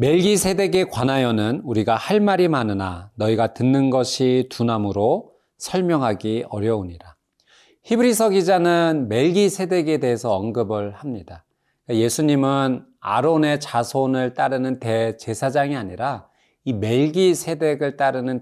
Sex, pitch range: male, 110-165 Hz